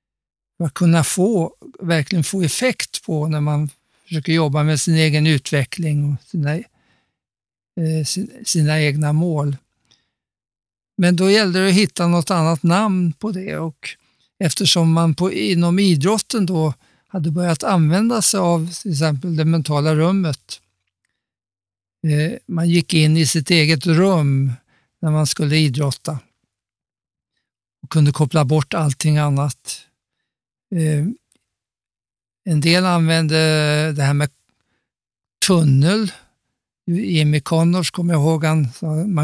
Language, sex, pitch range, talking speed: Swedish, male, 150-175 Hz, 125 wpm